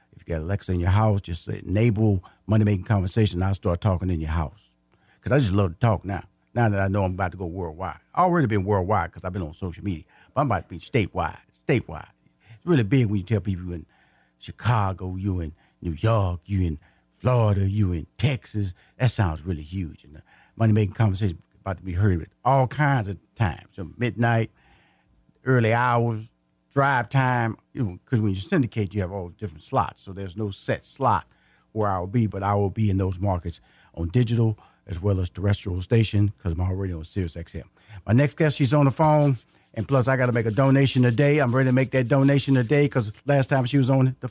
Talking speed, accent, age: 225 wpm, American, 50-69